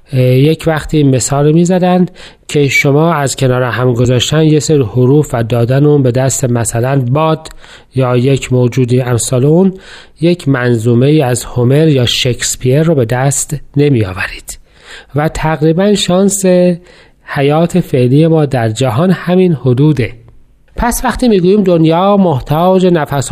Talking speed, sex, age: 130 wpm, male, 40-59